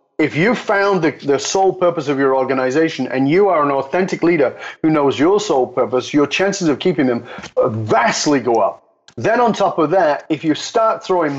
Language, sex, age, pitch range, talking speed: English, male, 30-49, 135-175 Hz, 200 wpm